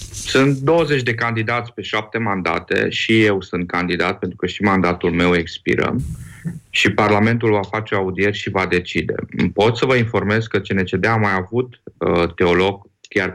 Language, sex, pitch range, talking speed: Romanian, male, 95-115 Hz, 160 wpm